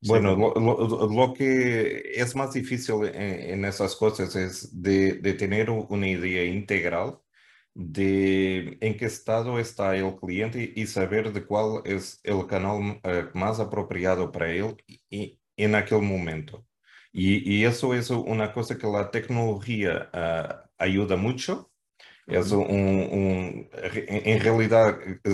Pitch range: 95-110 Hz